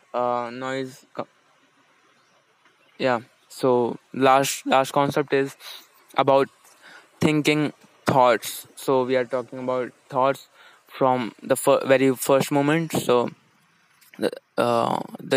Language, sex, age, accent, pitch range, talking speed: Hindi, male, 20-39, native, 125-140 Hz, 100 wpm